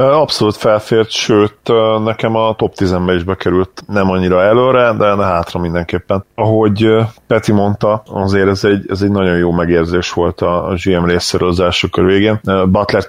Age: 30-49